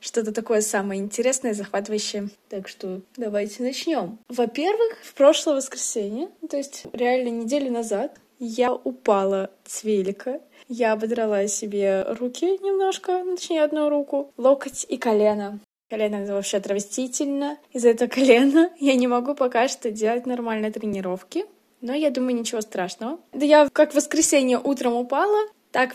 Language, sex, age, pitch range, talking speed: Russian, female, 20-39, 220-290 Hz, 140 wpm